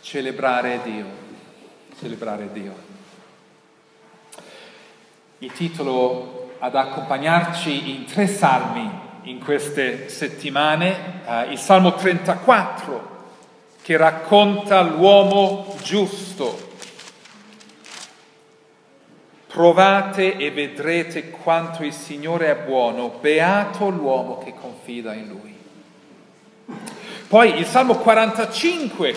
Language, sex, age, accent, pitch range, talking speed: Italian, male, 40-59, native, 150-210 Hz, 80 wpm